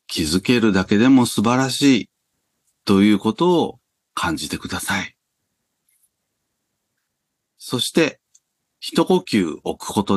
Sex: male